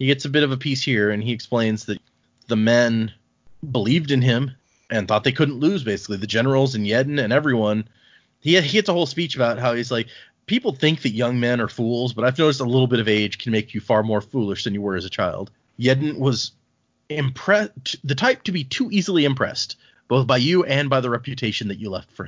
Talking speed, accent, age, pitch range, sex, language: 235 wpm, American, 30-49, 115-145 Hz, male, English